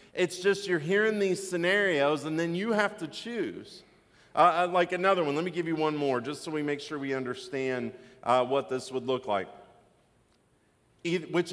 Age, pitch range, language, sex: 40-59, 130-175 Hz, English, male